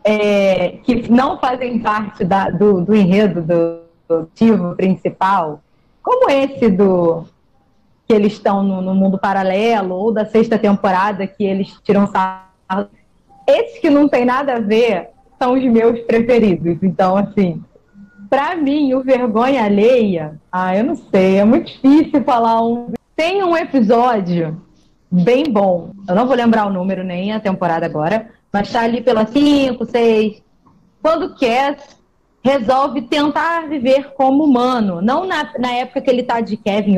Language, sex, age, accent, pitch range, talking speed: Portuguese, female, 20-39, Brazilian, 195-265 Hz, 150 wpm